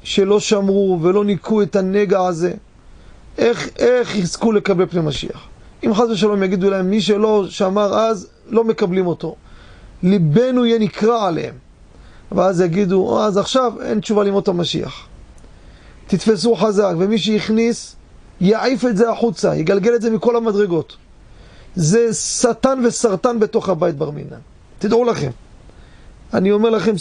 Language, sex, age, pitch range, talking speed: Hebrew, male, 40-59, 180-220 Hz, 135 wpm